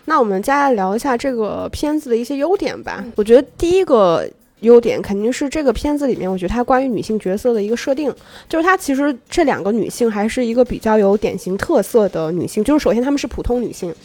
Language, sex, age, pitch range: Chinese, female, 20-39, 210-270 Hz